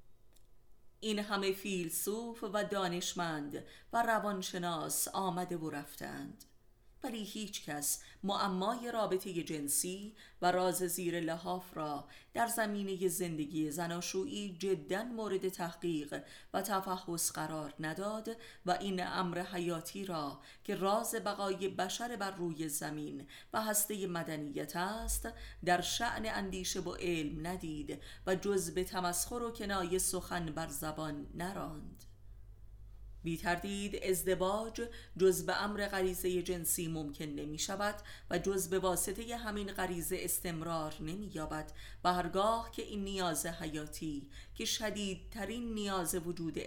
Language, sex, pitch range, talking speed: Persian, female, 155-195 Hz, 120 wpm